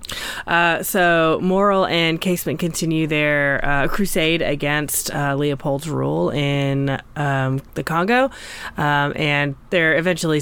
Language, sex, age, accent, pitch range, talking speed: English, female, 20-39, American, 145-170 Hz, 120 wpm